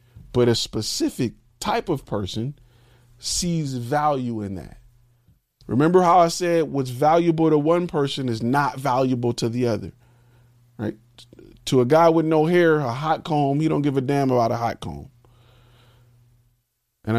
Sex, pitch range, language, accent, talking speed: male, 120-160 Hz, English, American, 155 wpm